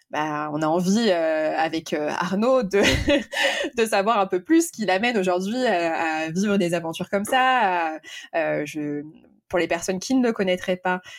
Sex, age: female, 20-39